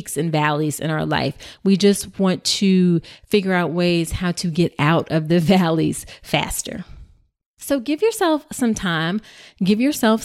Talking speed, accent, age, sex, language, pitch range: 160 wpm, American, 30-49, female, English, 165-215 Hz